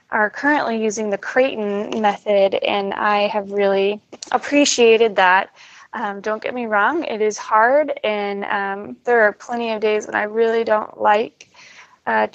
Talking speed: 160 wpm